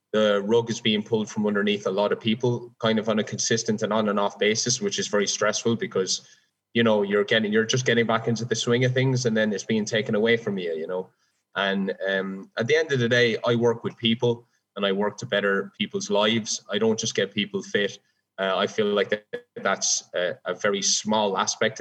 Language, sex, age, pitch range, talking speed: English, male, 20-39, 105-120 Hz, 235 wpm